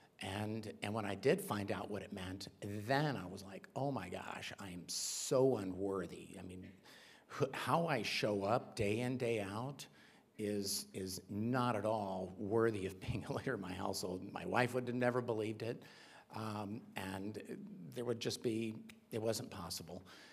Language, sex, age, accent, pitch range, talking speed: English, male, 50-69, American, 100-120 Hz, 180 wpm